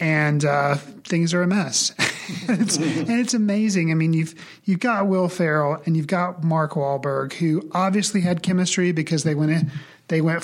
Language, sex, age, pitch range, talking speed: English, male, 40-59, 155-185 Hz, 190 wpm